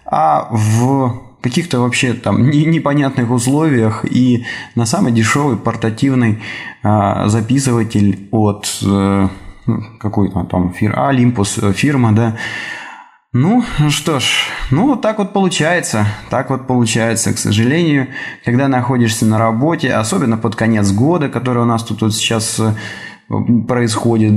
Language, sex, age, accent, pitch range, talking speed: Russian, male, 20-39, native, 110-135 Hz, 120 wpm